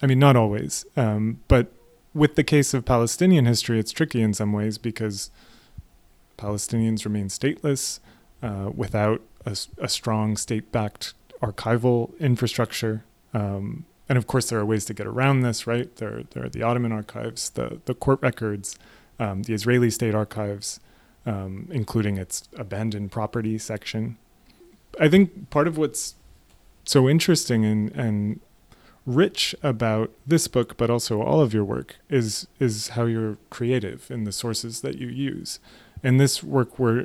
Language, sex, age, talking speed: English, male, 30-49, 155 wpm